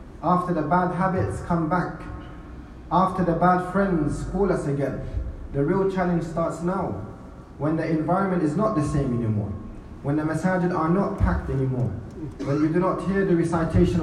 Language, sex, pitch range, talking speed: English, male, 135-165 Hz, 170 wpm